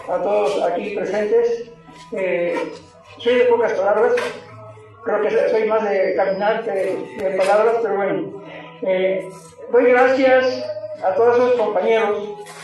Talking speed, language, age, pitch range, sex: 135 wpm, Spanish, 50-69, 195-245 Hz, male